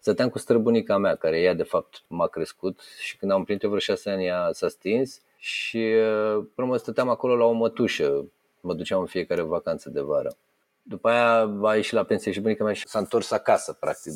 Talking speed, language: 210 wpm, Romanian